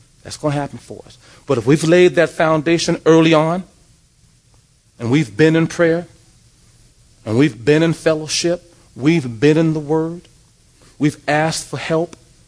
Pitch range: 120-160 Hz